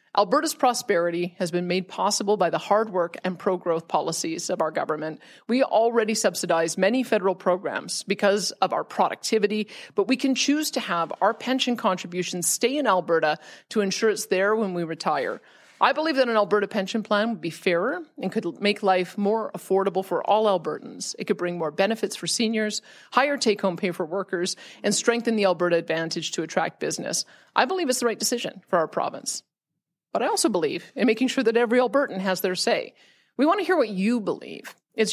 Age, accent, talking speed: 30-49, American, 195 wpm